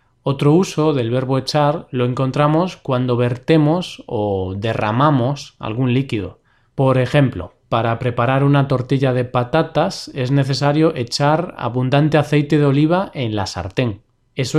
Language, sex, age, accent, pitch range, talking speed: Spanish, male, 20-39, Spanish, 125-160 Hz, 130 wpm